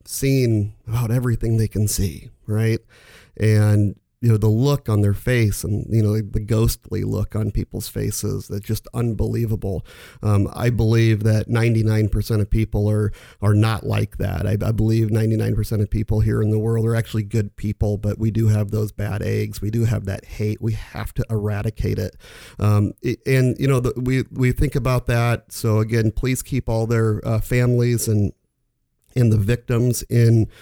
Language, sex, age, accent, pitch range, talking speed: English, male, 40-59, American, 105-115 Hz, 180 wpm